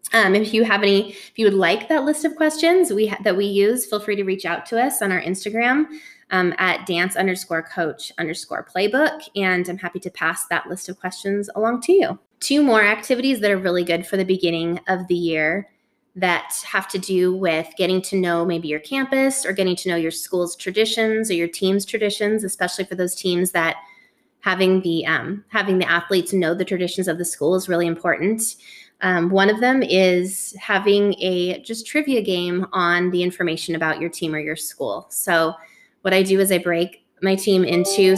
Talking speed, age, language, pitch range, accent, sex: 205 wpm, 20-39, English, 175-205 Hz, American, female